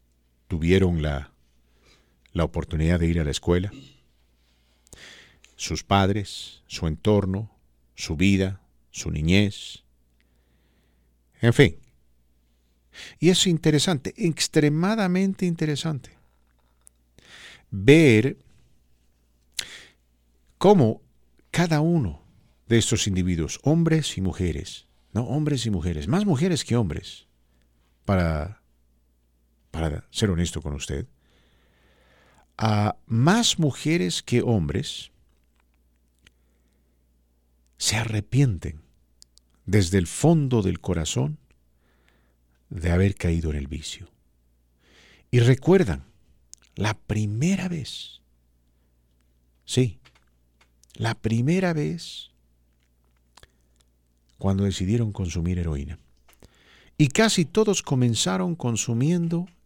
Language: English